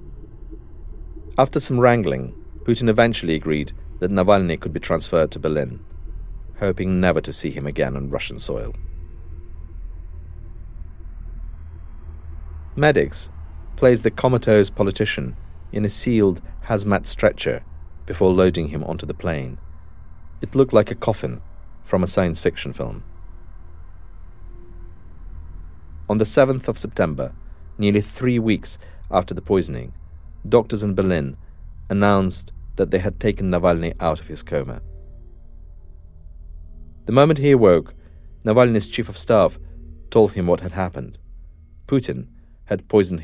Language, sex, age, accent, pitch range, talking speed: English, male, 50-69, British, 75-95 Hz, 120 wpm